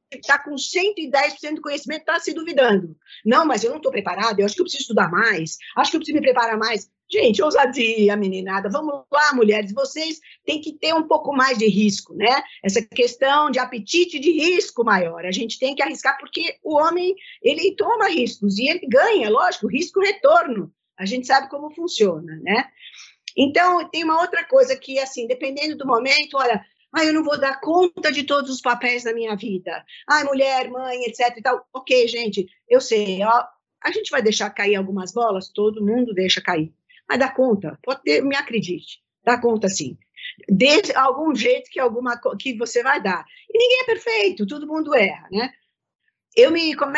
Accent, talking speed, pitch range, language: Brazilian, 190 wpm, 225-315 Hz, Portuguese